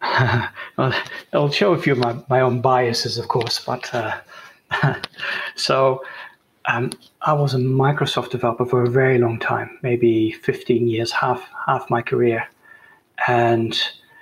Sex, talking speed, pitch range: male, 135 wpm, 115-135 Hz